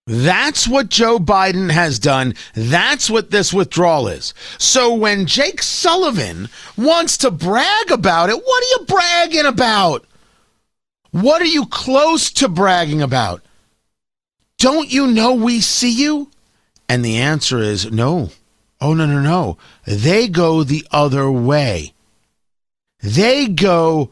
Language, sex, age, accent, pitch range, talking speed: English, male, 50-69, American, 145-230 Hz, 135 wpm